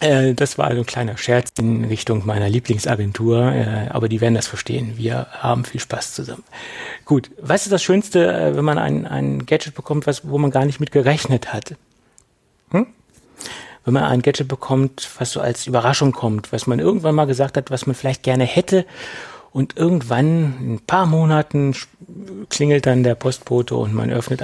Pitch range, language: 120-145 Hz, German